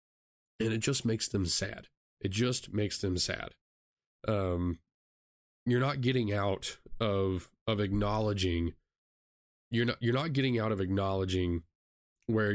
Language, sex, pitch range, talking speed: English, male, 95-110 Hz, 135 wpm